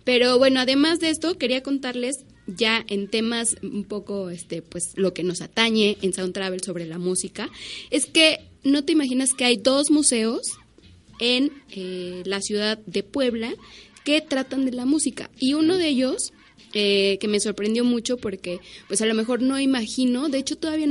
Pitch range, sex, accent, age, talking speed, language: 195-255 Hz, female, Mexican, 20-39, 180 wpm, Spanish